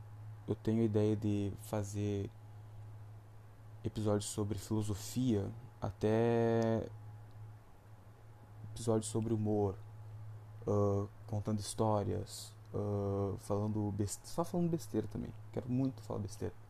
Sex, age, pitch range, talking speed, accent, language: male, 20-39, 105-110 Hz, 90 wpm, Brazilian, Portuguese